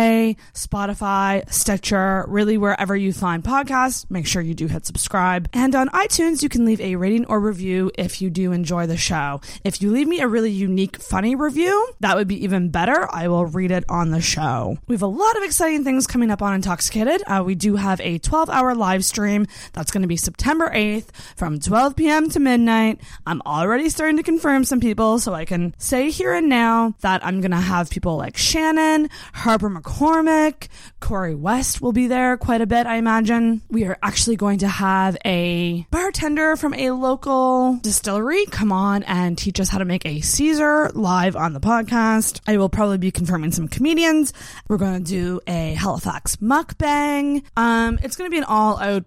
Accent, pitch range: American, 185-255 Hz